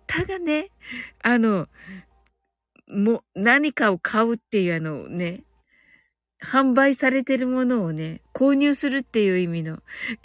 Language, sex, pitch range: Japanese, female, 245-395 Hz